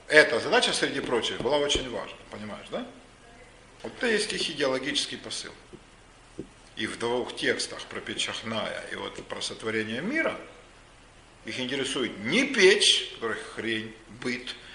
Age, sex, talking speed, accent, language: 50-69, male, 135 wpm, native, Russian